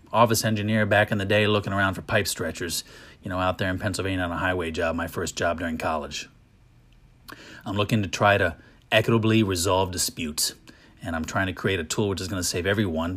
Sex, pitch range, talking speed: male, 95-115 Hz, 215 wpm